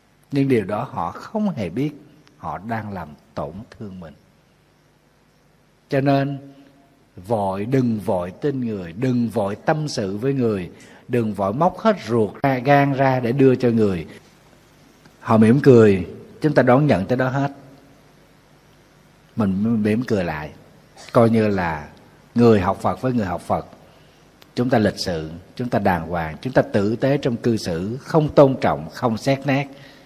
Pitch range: 100-135 Hz